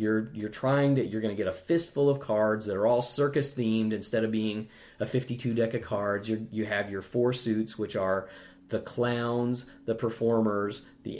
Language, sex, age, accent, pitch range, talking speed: English, male, 30-49, American, 100-115 Hz, 205 wpm